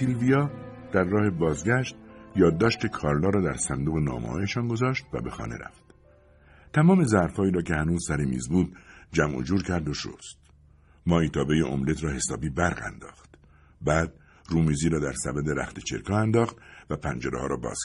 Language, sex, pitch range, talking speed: English, male, 75-100 Hz, 160 wpm